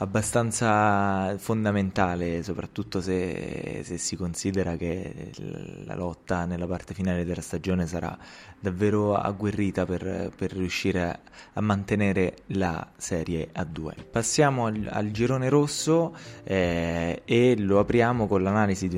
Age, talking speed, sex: 20-39, 120 wpm, male